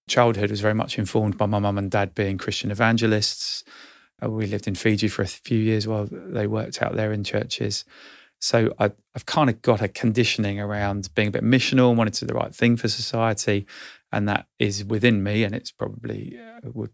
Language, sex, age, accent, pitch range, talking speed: English, male, 30-49, British, 105-115 Hz, 205 wpm